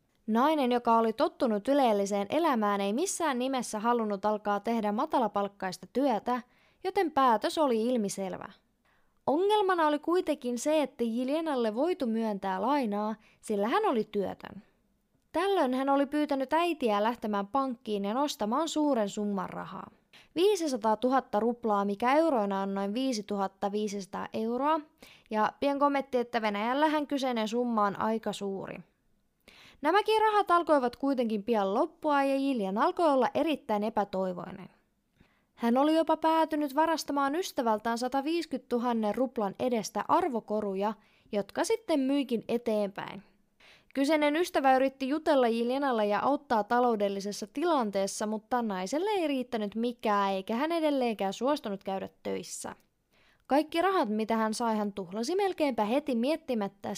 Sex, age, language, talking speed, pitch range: female, 20-39, Finnish, 125 wpm, 210-295 Hz